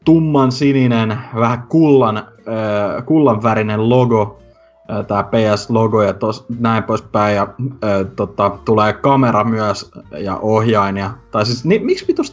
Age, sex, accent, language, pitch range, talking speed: 20-39, male, native, Finnish, 100-125 Hz, 140 wpm